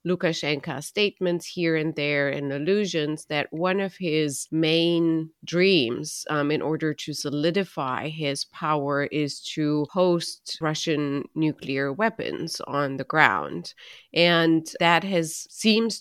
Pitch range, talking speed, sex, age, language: 145-165 Hz, 125 wpm, female, 30-49, English